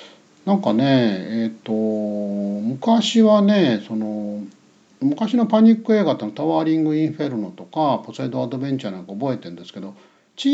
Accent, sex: native, male